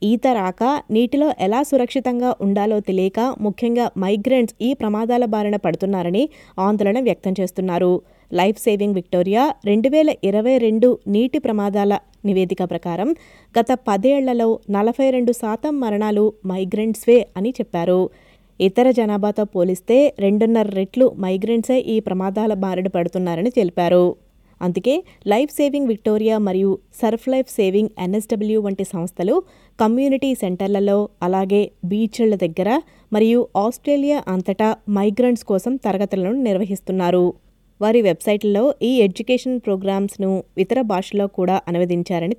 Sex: female